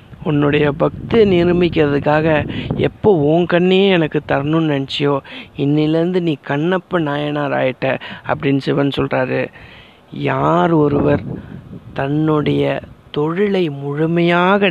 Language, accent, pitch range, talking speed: Tamil, native, 145-175 Hz, 85 wpm